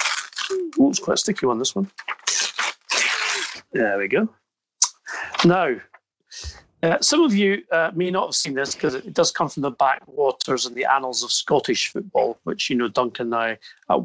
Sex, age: male, 40-59